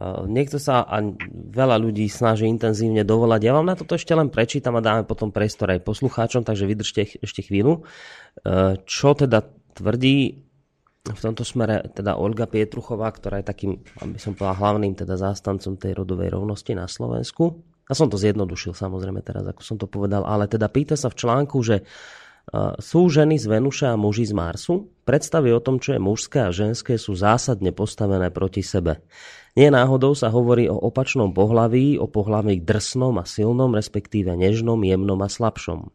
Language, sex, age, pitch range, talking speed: Slovak, male, 30-49, 100-130 Hz, 170 wpm